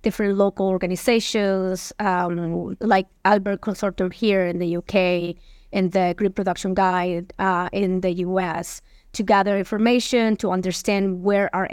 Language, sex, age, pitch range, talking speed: English, female, 20-39, 185-215 Hz, 140 wpm